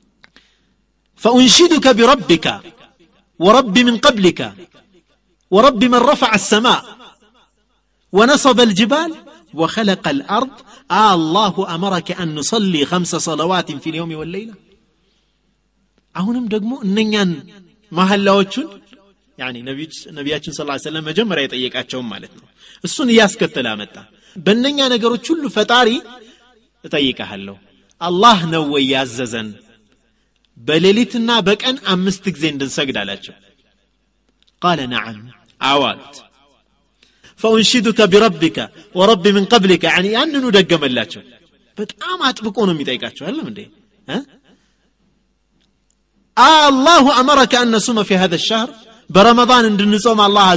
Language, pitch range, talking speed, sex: Amharic, 160-235 Hz, 100 wpm, male